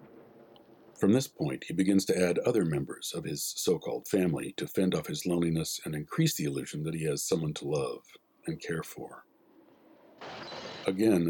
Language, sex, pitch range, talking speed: English, male, 85-110 Hz, 170 wpm